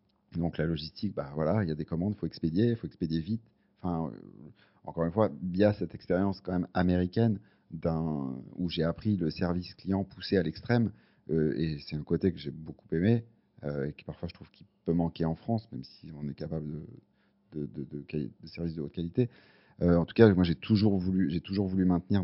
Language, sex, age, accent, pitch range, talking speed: French, male, 40-59, French, 80-100 Hz, 225 wpm